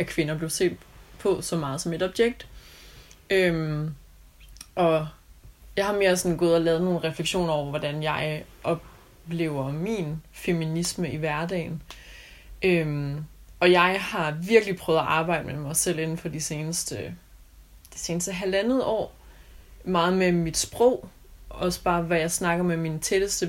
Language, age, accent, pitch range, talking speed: Danish, 20-39, native, 150-180 Hz, 145 wpm